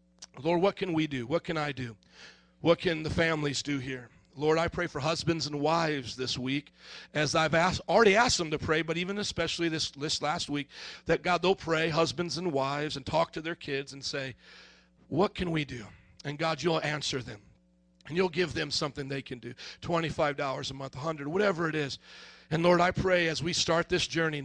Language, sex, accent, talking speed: English, male, American, 210 wpm